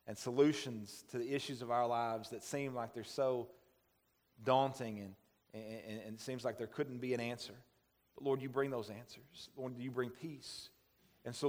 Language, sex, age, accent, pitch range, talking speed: English, male, 40-59, American, 115-130 Hz, 195 wpm